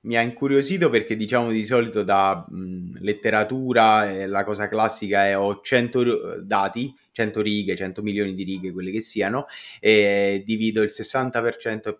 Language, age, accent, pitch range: Italian, 20-39, native, 100-125 Hz